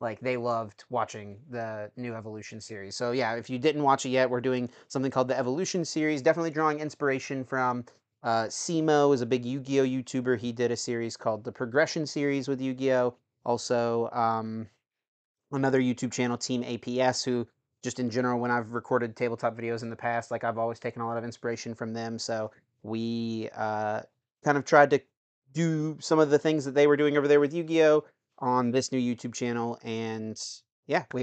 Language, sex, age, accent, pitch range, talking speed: English, male, 30-49, American, 115-135 Hz, 190 wpm